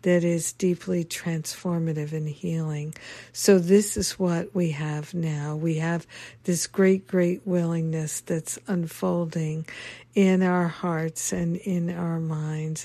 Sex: female